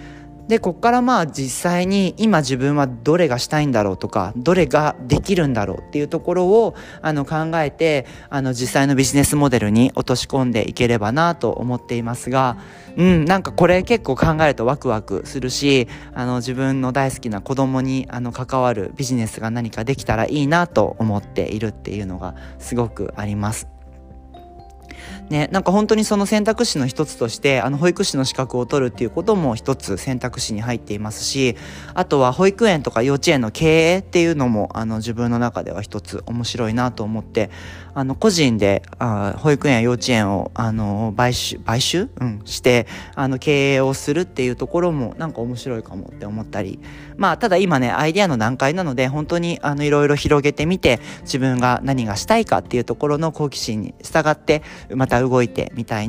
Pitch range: 115-150 Hz